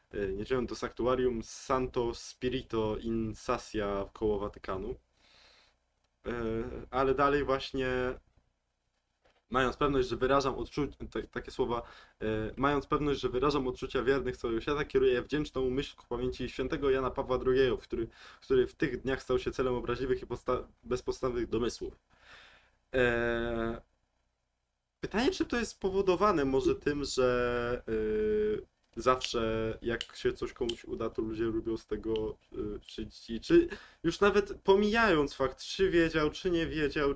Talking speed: 125 wpm